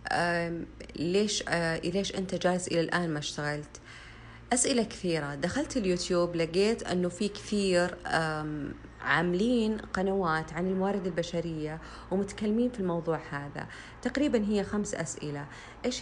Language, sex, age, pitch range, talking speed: Arabic, female, 30-49, 155-190 Hz, 120 wpm